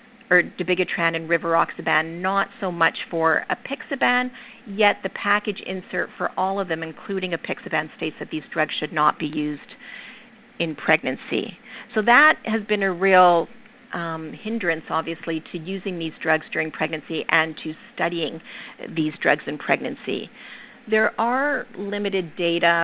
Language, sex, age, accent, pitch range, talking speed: English, female, 40-59, American, 165-205 Hz, 145 wpm